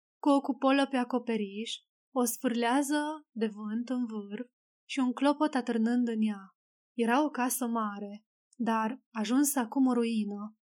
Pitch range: 220-260 Hz